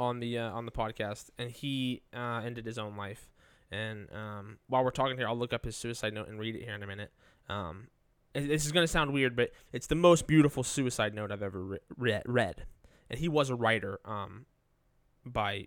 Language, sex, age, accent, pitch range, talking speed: English, male, 20-39, American, 110-145 Hz, 220 wpm